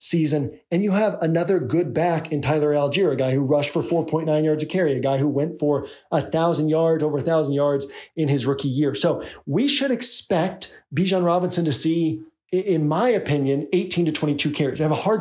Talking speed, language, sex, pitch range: 205 wpm, English, male, 150-180 Hz